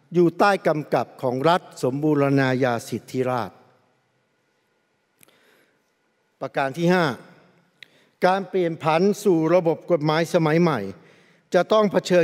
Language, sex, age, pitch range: Thai, male, 60-79, 135-180 Hz